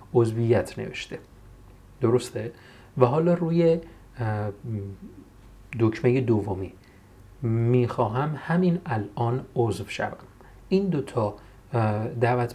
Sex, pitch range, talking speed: male, 105-140 Hz, 75 wpm